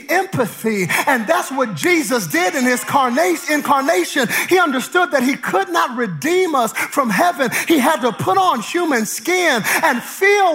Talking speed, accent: 160 wpm, American